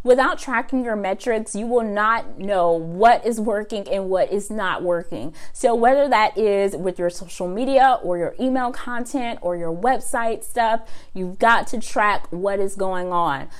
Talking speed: 175 wpm